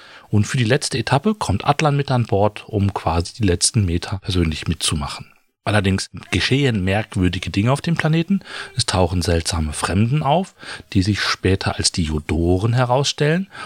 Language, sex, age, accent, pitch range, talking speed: German, male, 40-59, German, 95-130 Hz, 160 wpm